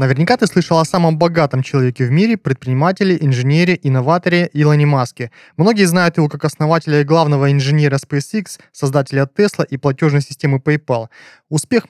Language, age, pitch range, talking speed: Russian, 20-39, 140-175 Hz, 150 wpm